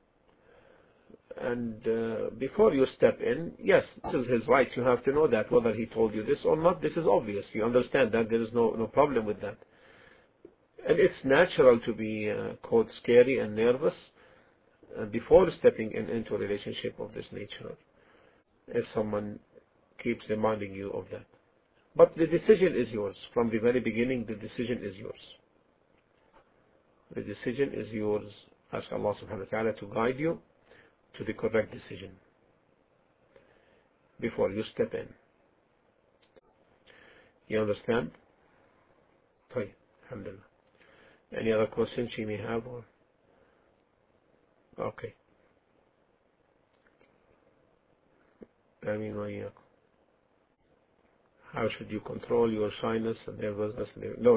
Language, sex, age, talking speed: English, male, 50-69, 130 wpm